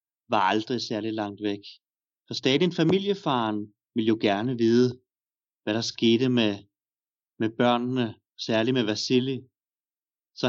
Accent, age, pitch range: native, 30-49, 115-150 Hz